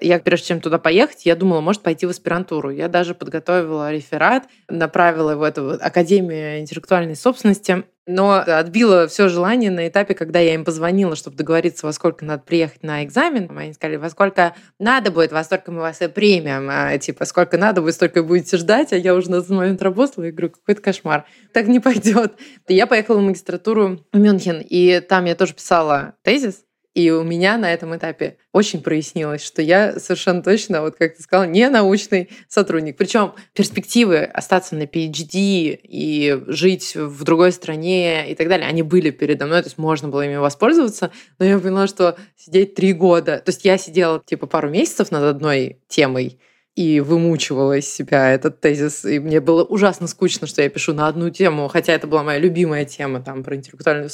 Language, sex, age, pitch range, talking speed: Russian, female, 20-39, 160-190 Hz, 190 wpm